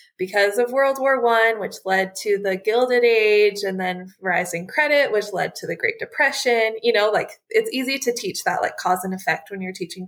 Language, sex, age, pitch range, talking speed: English, female, 20-39, 195-275 Hz, 215 wpm